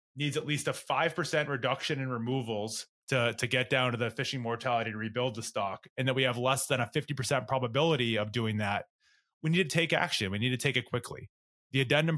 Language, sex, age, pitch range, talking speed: English, male, 20-39, 115-140 Hz, 220 wpm